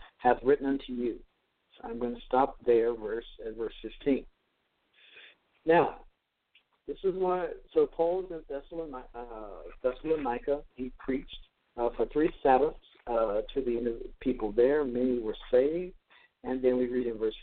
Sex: male